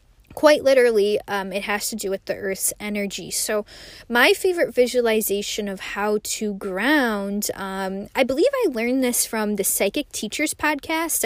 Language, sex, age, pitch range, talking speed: English, female, 10-29, 195-230 Hz, 160 wpm